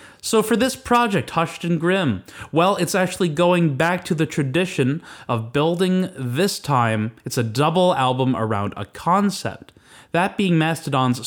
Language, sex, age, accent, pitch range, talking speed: English, male, 20-39, American, 120-170 Hz, 155 wpm